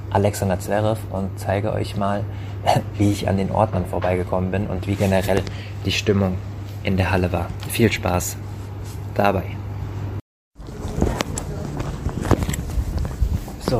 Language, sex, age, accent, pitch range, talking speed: German, male, 30-49, German, 90-100 Hz, 115 wpm